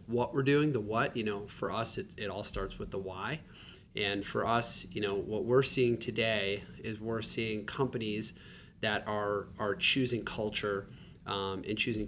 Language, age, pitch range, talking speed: English, 30-49, 100-115 Hz, 185 wpm